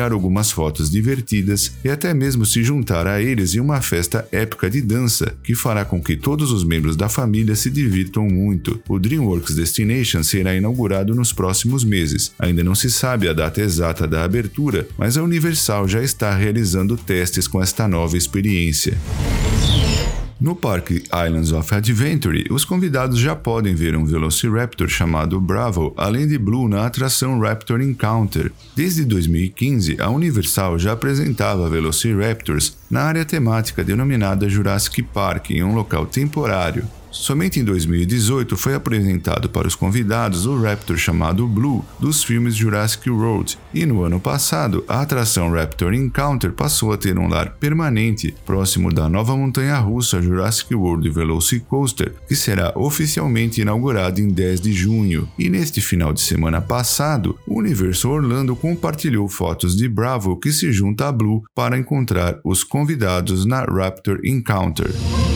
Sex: male